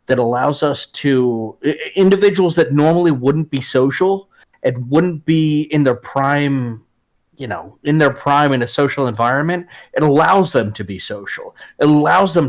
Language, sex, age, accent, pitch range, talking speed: English, male, 30-49, American, 120-150 Hz, 165 wpm